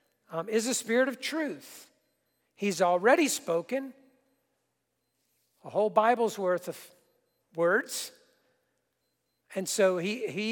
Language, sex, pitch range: English, male, 180-220 Hz